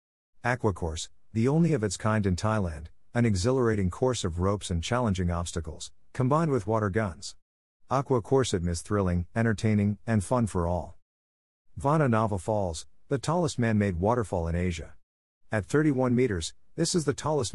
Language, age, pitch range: English, 50-69, 90-115 Hz